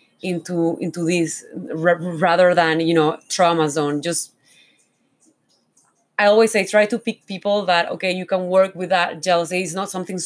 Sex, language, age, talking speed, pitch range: female, English, 30-49, 165 wpm, 175-200 Hz